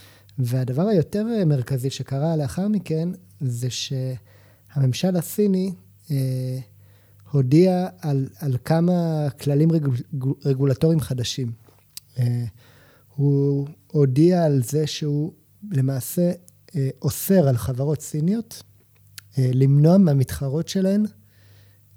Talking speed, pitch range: 85 wpm, 125-165 Hz